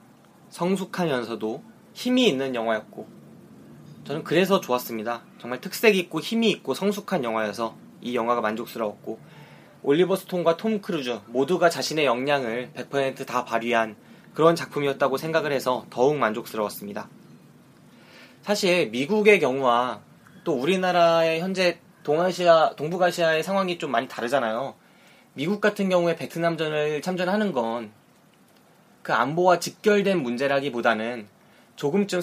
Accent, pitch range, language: native, 125-180 Hz, Korean